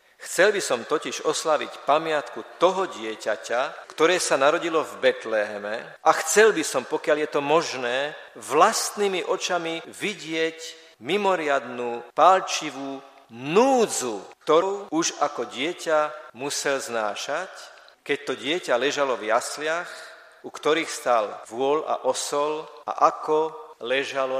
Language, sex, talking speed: Slovak, male, 120 wpm